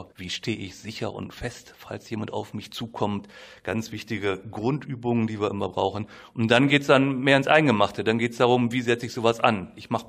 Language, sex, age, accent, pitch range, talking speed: German, male, 40-59, German, 105-130 Hz, 220 wpm